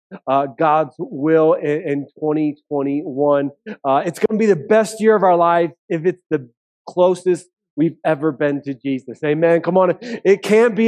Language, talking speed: English, 170 wpm